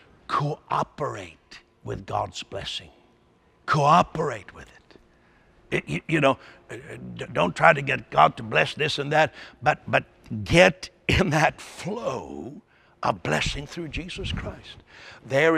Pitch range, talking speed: 115-155 Hz, 125 wpm